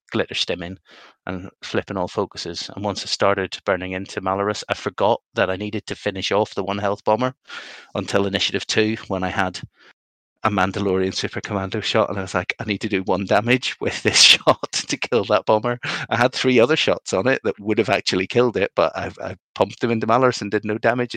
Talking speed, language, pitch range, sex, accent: 220 wpm, English, 95-115 Hz, male, British